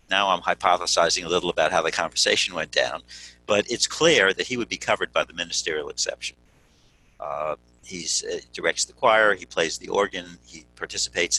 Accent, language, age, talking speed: American, English, 60-79, 180 wpm